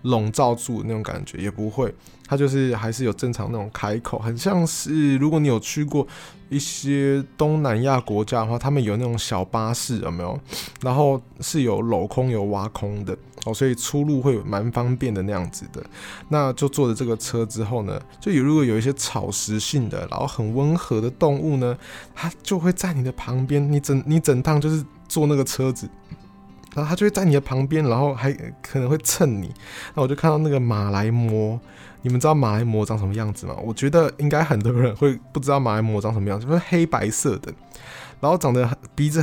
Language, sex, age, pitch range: Chinese, male, 20-39, 115-145 Hz